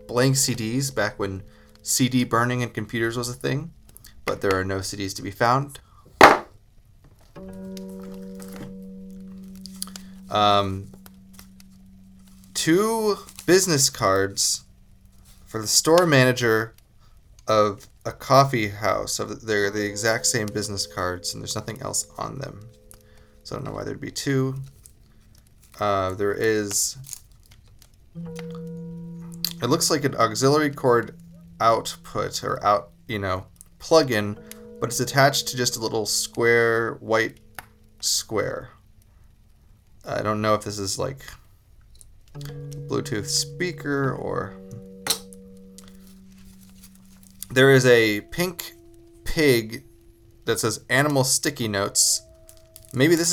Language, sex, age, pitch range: English, male, 20-39, 95-135 Hz